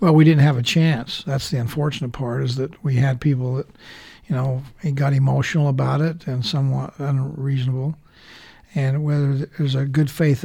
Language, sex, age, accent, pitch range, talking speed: English, male, 60-79, American, 135-155 Hz, 180 wpm